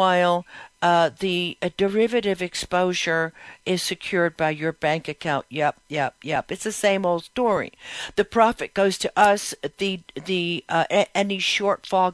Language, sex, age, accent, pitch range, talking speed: English, female, 60-79, American, 165-210 Hz, 150 wpm